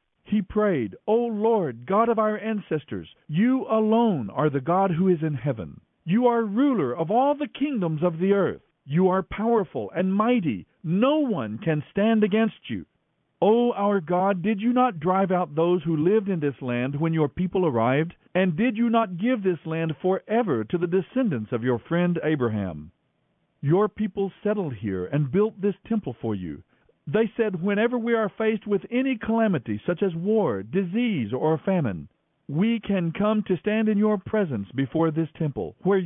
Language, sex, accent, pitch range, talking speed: English, male, American, 155-220 Hz, 180 wpm